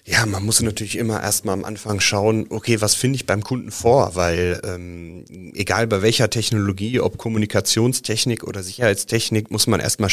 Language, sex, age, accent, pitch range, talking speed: German, male, 30-49, German, 95-110 Hz, 170 wpm